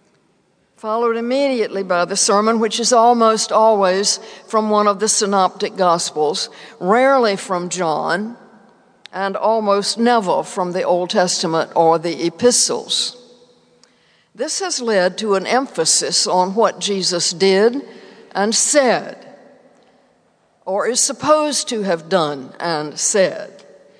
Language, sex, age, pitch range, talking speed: English, female, 60-79, 190-240 Hz, 120 wpm